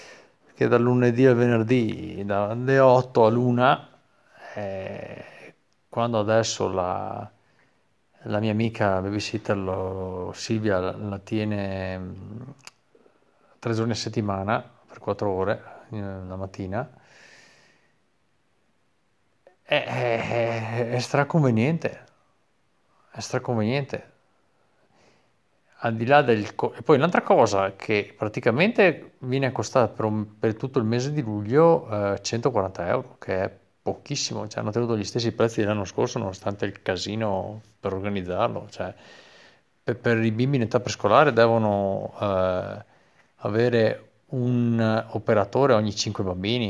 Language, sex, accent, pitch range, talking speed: Italian, male, native, 100-120 Hz, 115 wpm